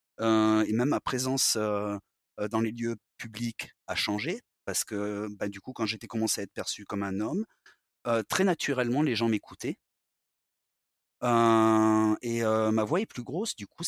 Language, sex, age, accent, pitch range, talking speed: French, male, 30-49, French, 105-125 Hz, 180 wpm